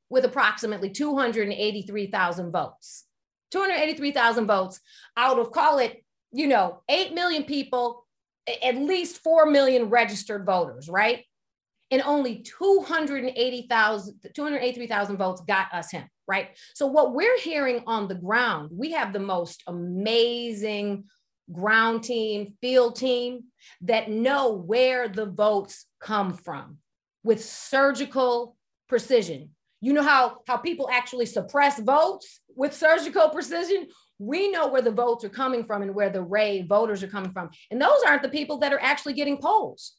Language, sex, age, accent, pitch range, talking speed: English, female, 30-49, American, 210-280 Hz, 140 wpm